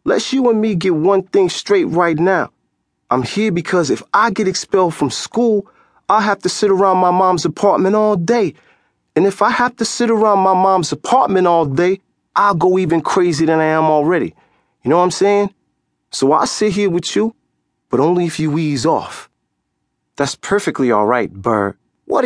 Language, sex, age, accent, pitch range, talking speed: English, male, 30-49, American, 130-215 Hz, 195 wpm